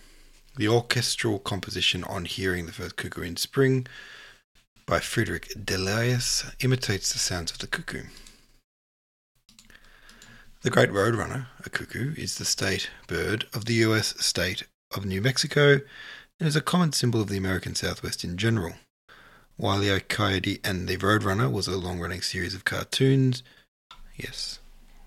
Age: 30-49